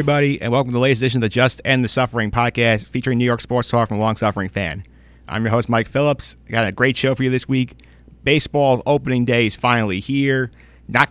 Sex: male